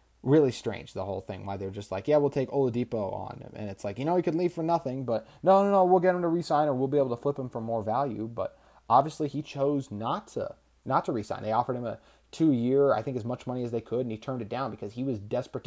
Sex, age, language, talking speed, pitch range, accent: male, 30-49, English, 285 wpm, 105-135 Hz, American